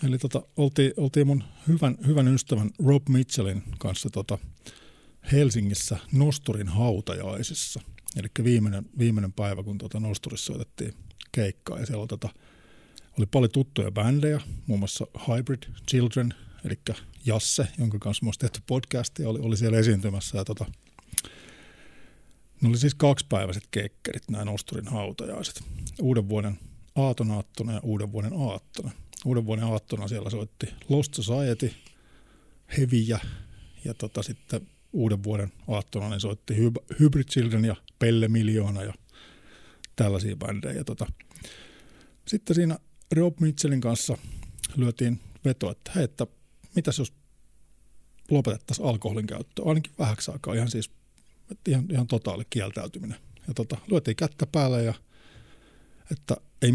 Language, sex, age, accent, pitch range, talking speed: Finnish, male, 50-69, native, 105-130 Hz, 125 wpm